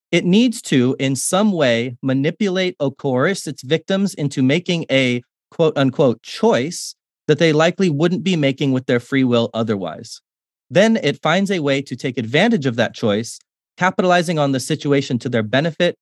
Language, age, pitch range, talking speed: English, 30-49, 130-180 Hz, 170 wpm